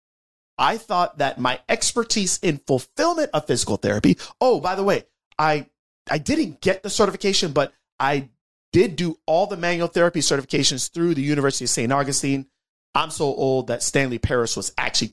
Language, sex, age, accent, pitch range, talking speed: English, male, 30-49, American, 130-195 Hz, 170 wpm